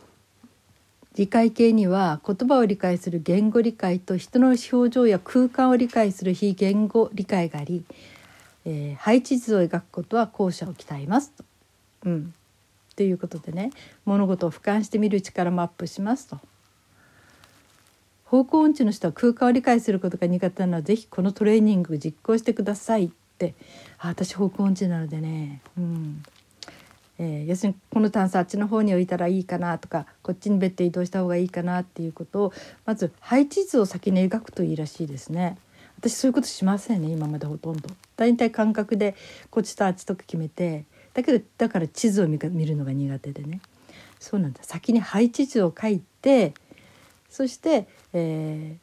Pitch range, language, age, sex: 165-220 Hz, Japanese, 60-79, female